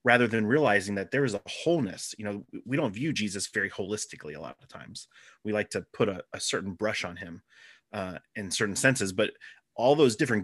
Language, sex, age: English, male, 30-49